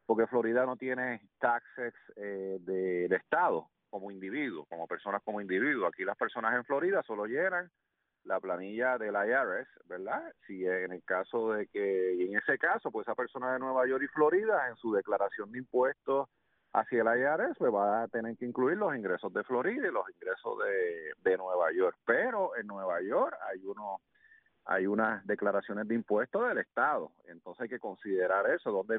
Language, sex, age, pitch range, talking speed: English, male, 40-59, 105-155 Hz, 185 wpm